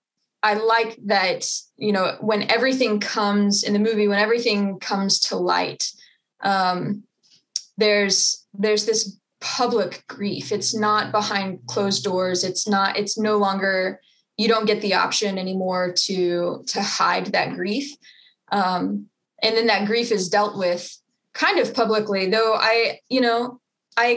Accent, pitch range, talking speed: American, 200-235 Hz, 145 wpm